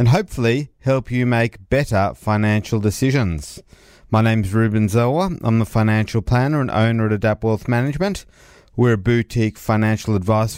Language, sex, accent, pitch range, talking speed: English, male, Australian, 100-125 Hz, 160 wpm